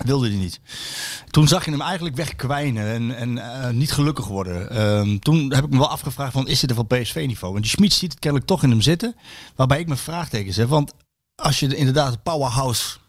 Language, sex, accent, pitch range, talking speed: Dutch, male, Dutch, 120-155 Hz, 225 wpm